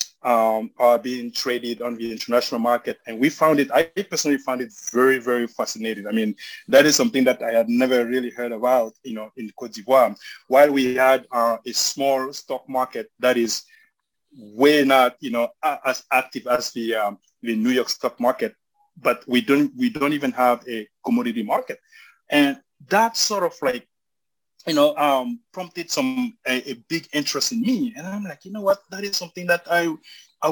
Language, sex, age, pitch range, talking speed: English, male, 30-49, 120-200 Hz, 195 wpm